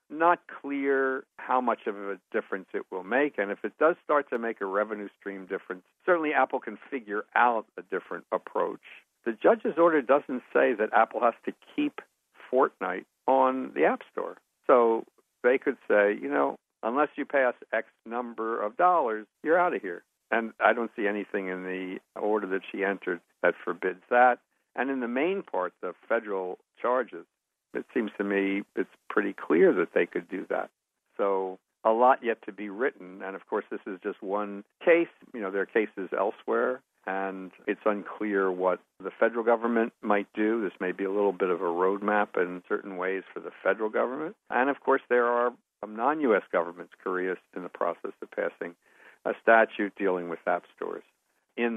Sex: male